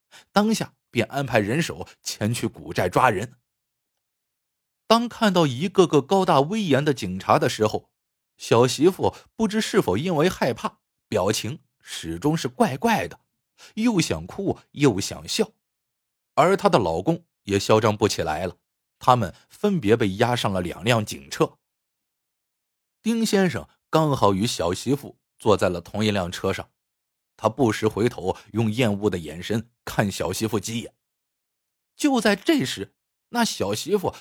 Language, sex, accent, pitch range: Chinese, male, native, 110-180 Hz